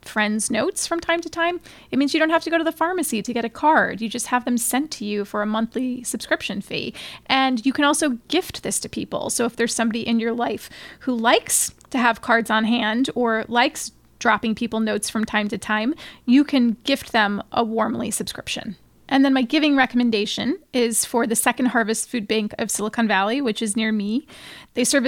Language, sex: English, female